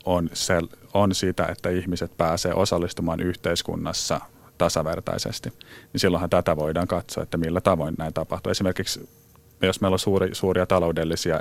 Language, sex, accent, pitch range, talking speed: Finnish, male, native, 80-95 Hz, 130 wpm